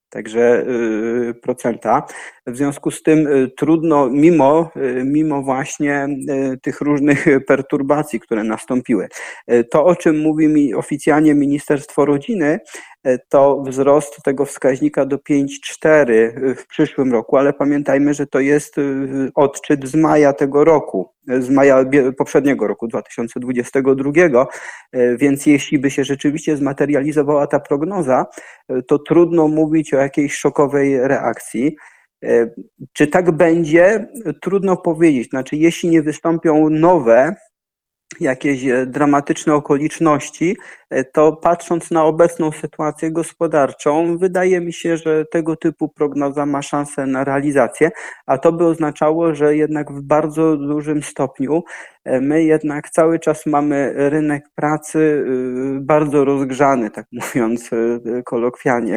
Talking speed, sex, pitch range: 115 wpm, male, 135-155 Hz